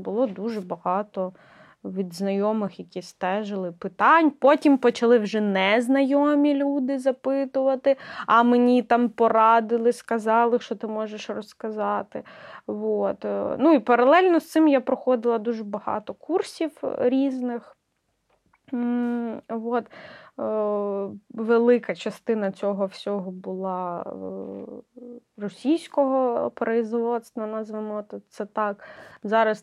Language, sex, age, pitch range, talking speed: Ukrainian, female, 20-39, 205-265 Hz, 100 wpm